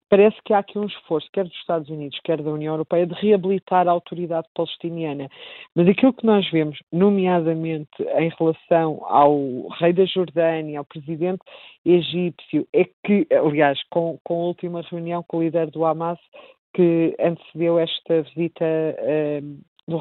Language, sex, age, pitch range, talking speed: Portuguese, female, 50-69, 165-200 Hz, 155 wpm